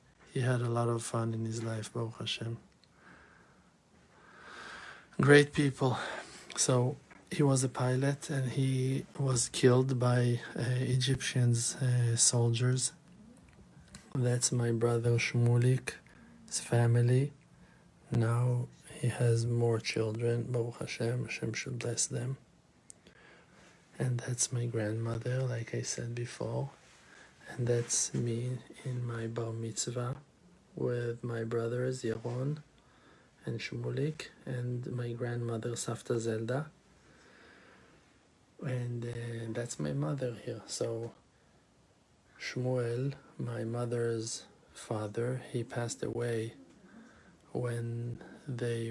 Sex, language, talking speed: male, English, 105 wpm